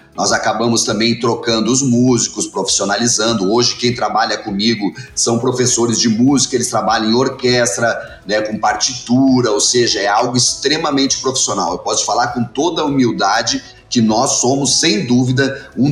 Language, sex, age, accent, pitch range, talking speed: Portuguese, male, 30-49, Brazilian, 115-135 Hz, 155 wpm